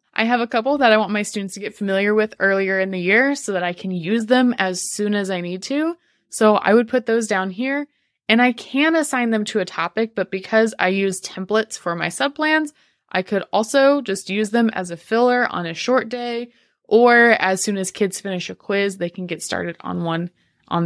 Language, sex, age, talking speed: English, female, 20-39, 235 wpm